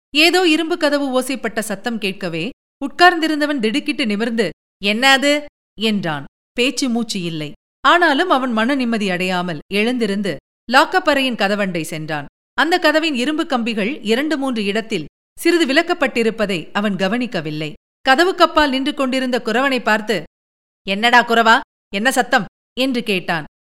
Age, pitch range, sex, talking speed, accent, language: 50-69, 205-285 Hz, female, 110 wpm, native, Tamil